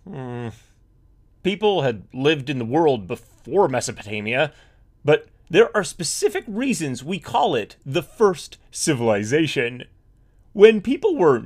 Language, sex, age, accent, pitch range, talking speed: English, male, 30-49, American, 120-195 Hz, 115 wpm